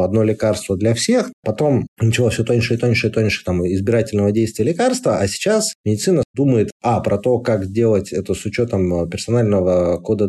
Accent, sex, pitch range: native, male, 95-120 Hz